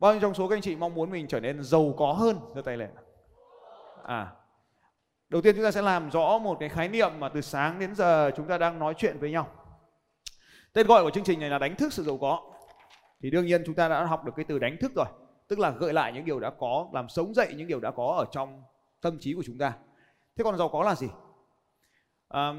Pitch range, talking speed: 135-200 Hz, 255 wpm